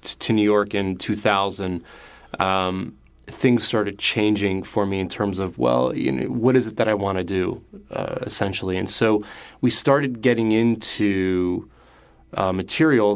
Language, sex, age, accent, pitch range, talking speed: English, male, 30-49, American, 95-115 Hz, 160 wpm